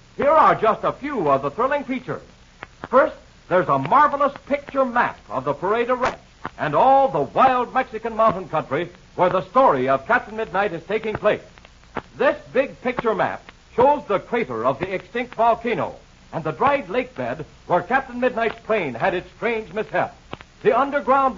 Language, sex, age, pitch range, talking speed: English, male, 60-79, 200-265 Hz, 170 wpm